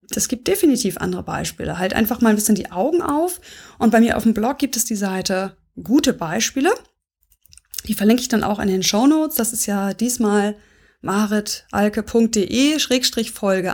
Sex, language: female, German